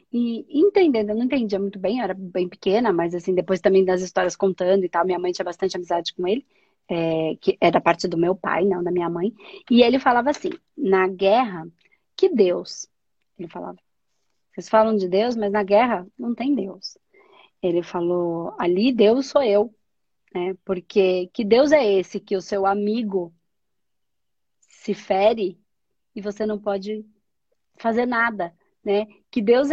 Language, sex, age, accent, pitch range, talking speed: Portuguese, female, 20-39, Brazilian, 190-235 Hz, 170 wpm